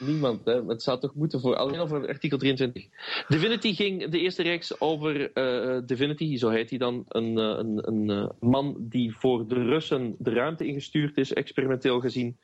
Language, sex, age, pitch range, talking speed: English, male, 30-49, 115-140 Hz, 180 wpm